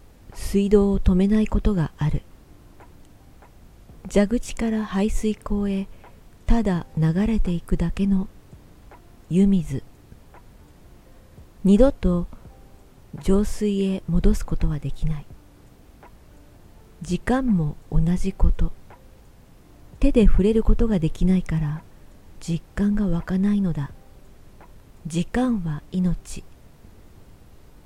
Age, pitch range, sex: 40-59, 140-200 Hz, female